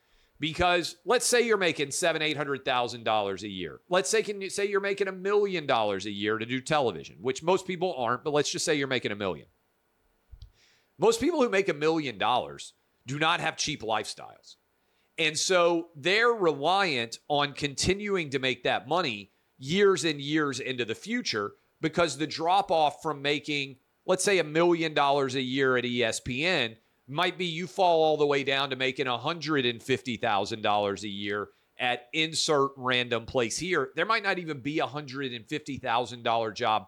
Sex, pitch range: male, 125-175 Hz